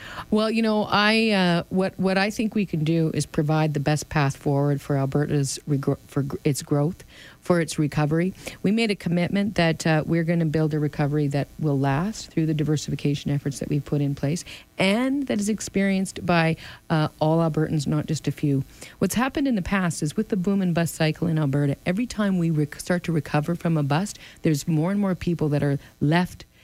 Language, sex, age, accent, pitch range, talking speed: English, female, 40-59, American, 150-190 Hz, 215 wpm